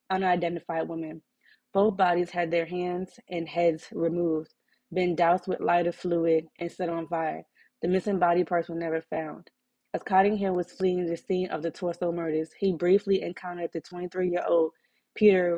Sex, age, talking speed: female, 20-39, 160 wpm